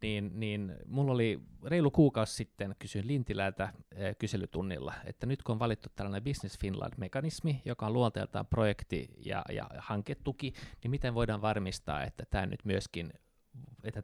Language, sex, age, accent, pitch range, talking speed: Finnish, male, 30-49, native, 100-125 Hz, 135 wpm